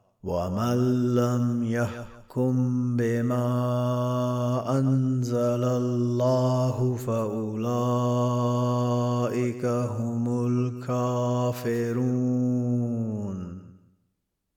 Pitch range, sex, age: 115-120 Hz, male, 30-49